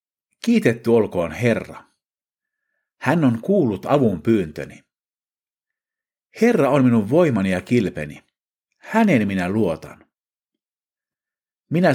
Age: 50-69